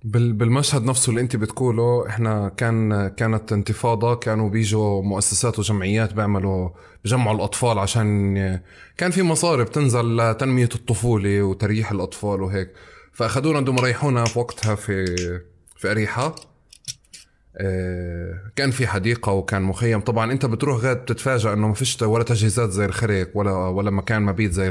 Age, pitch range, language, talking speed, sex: 20-39, 95-125 Hz, Arabic, 135 wpm, male